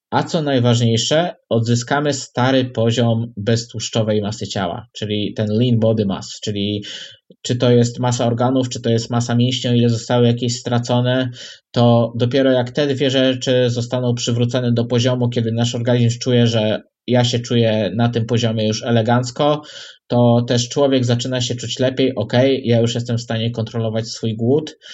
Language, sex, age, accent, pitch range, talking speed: Polish, male, 20-39, native, 115-130 Hz, 165 wpm